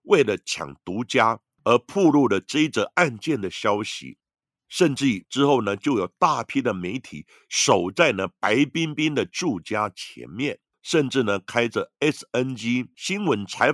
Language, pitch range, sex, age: Chinese, 100-150 Hz, male, 60-79